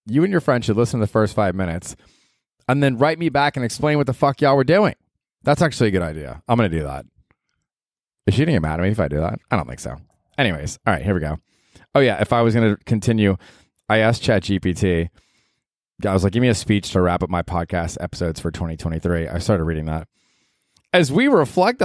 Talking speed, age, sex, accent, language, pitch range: 245 wpm, 30-49, male, American, English, 90-130 Hz